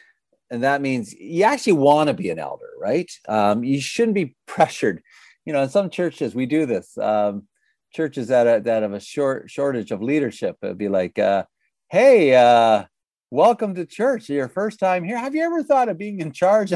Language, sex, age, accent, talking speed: English, male, 50-69, American, 195 wpm